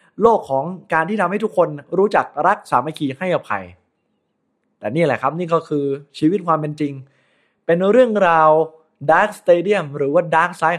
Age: 20-39